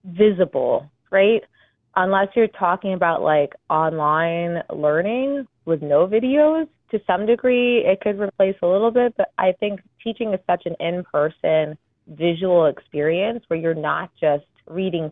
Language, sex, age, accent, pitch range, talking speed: English, female, 20-39, American, 155-200 Hz, 145 wpm